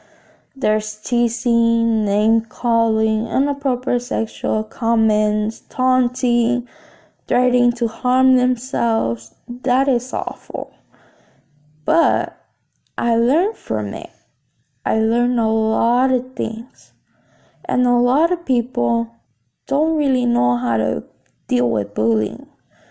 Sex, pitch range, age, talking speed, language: female, 210-275 Hz, 10-29, 100 wpm, English